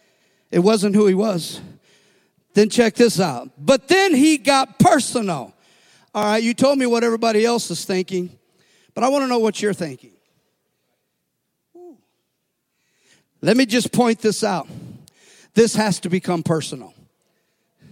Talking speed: 145 wpm